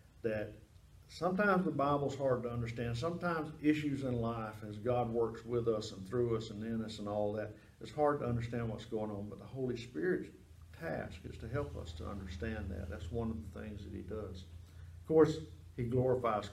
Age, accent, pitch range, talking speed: 50-69, American, 95-140 Hz, 205 wpm